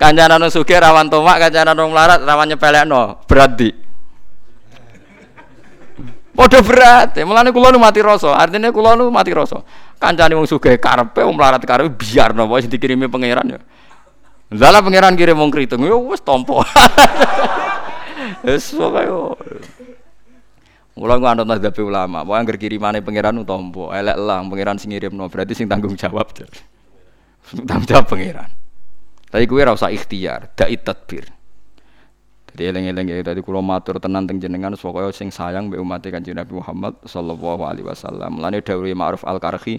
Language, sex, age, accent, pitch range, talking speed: Indonesian, male, 20-39, native, 95-150 Hz, 120 wpm